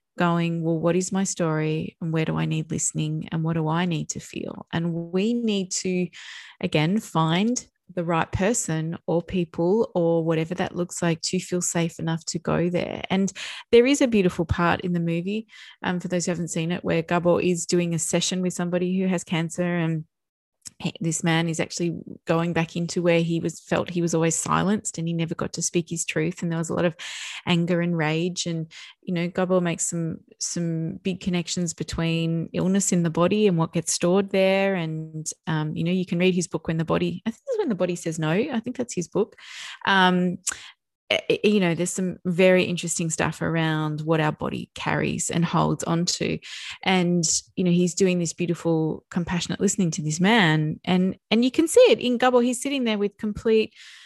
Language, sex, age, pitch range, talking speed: English, female, 20-39, 165-195 Hz, 210 wpm